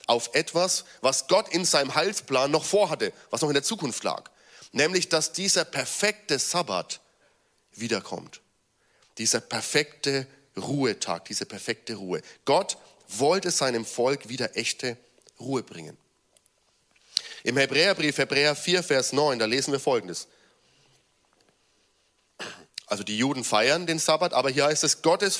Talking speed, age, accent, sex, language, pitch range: 130 wpm, 40-59, German, male, German, 125-165 Hz